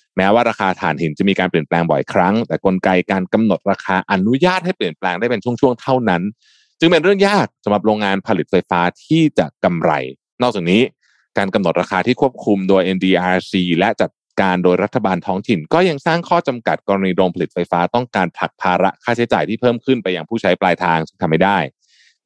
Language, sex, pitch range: Thai, male, 90-120 Hz